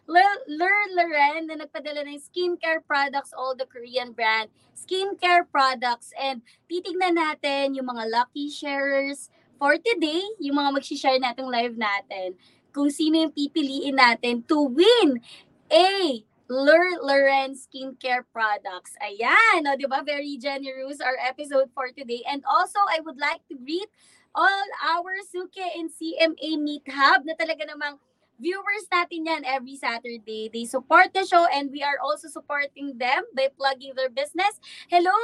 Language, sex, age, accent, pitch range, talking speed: English, female, 20-39, Filipino, 275-355 Hz, 155 wpm